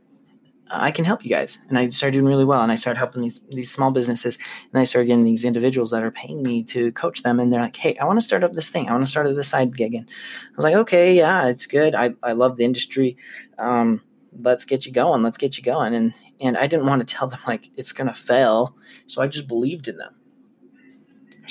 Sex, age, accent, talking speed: male, 20-39, American, 255 wpm